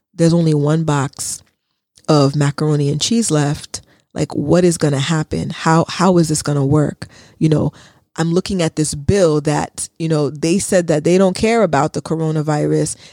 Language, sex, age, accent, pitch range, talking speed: English, female, 20-39, American, 150-180 Hz, 185 wpm